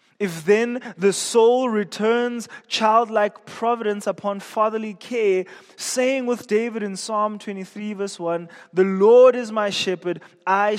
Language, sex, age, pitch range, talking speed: English, male, 20-39, 170-220 Hz, 135 wpm